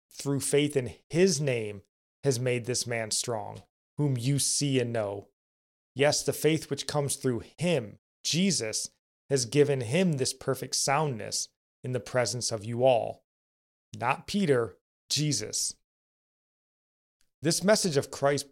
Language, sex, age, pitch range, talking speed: English, male, 30-49, 110-145 Hz, 135 wpm